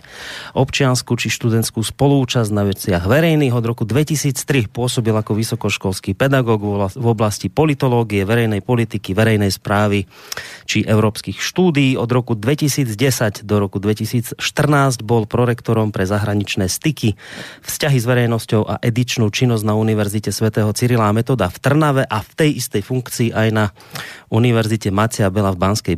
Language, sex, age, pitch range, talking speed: Slovak, male, 30-49, 100-125 Hz, 140 wpm